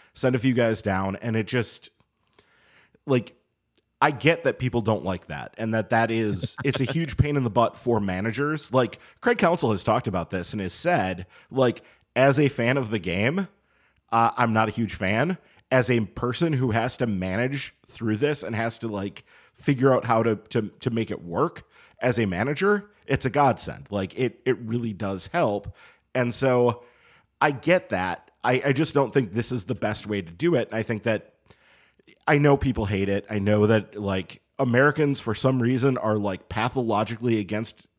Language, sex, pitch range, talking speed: English, male, 105-130 Hz, 195 wpm